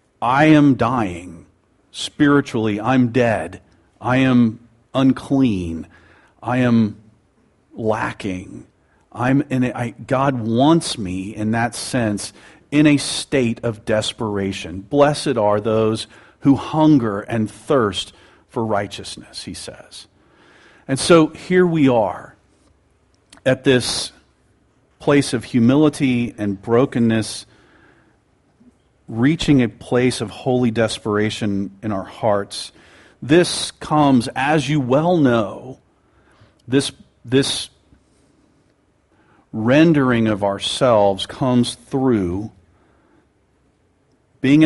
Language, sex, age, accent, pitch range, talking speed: English, male, 40-59, American, 100-135 Hz, 100 wpm